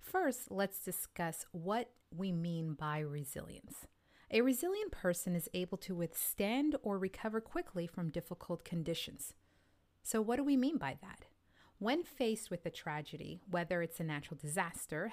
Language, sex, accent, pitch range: English, female, American, 170-230 Hz